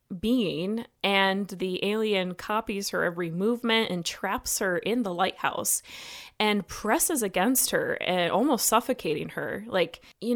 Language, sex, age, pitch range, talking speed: English, female, 20-39, 185-250 Hz, 140 wpm